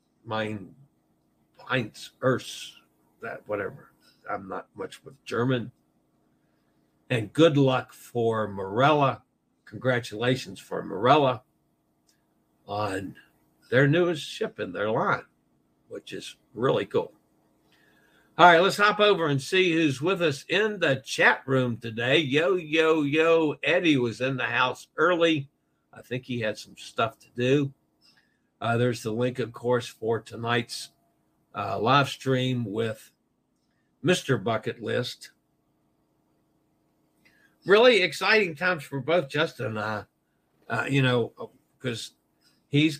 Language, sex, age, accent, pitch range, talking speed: English, male, 60-79, American, 115-145 Hz, 125 wpm